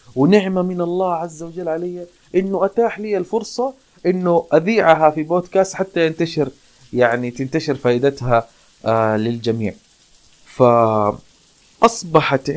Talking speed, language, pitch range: 100 wpm, Arabic, 130-180 Hz